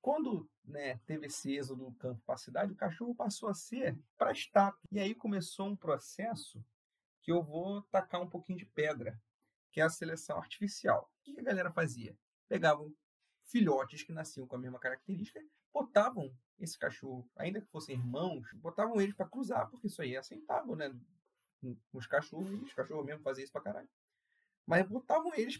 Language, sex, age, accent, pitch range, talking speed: Portuguese, male, 30-49, Brazilian, 135-205 Hz, 175 wpm